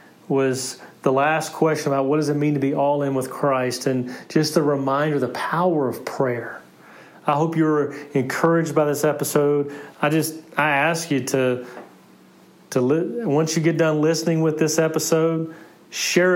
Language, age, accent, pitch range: English, 30-49, American, 140-160 Hz